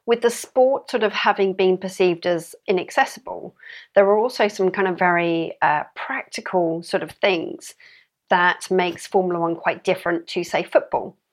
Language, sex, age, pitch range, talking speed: English, female, 40-59, 175-205 Hz, 165 wpm